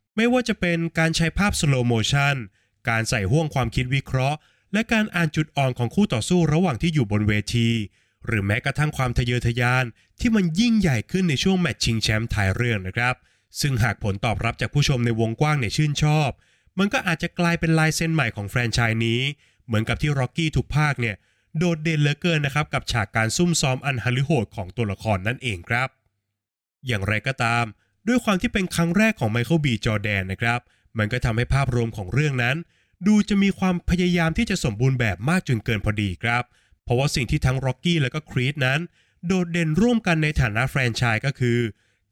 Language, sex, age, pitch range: Thai, male, 20-39, 115-160 Hz